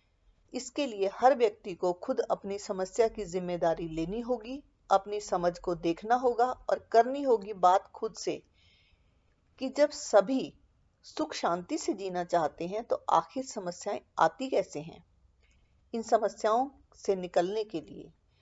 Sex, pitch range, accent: female, 160-230 Hz, native